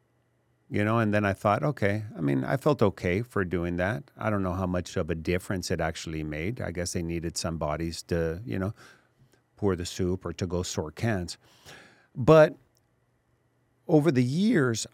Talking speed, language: 190 wpm, English